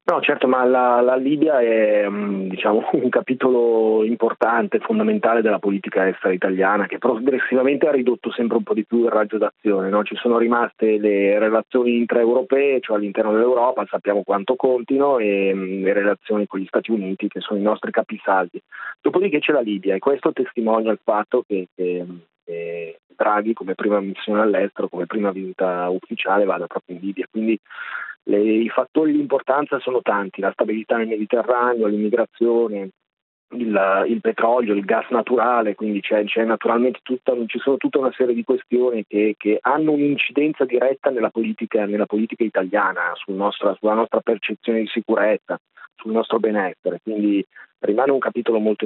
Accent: native